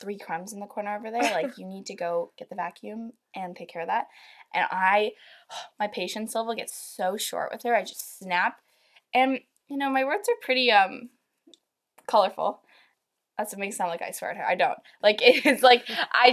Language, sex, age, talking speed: English, female, 10-29, 215 wpm